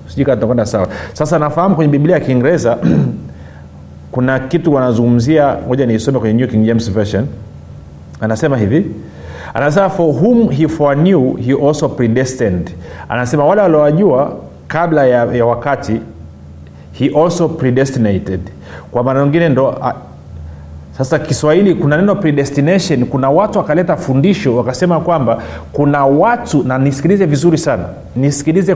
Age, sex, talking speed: 40-59, male, 130 wpm